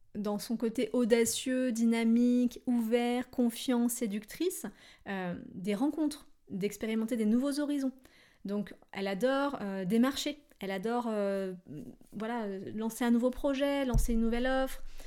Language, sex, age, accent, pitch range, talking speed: French, female, 30-49, French, 200-255 Hz, 125 wpm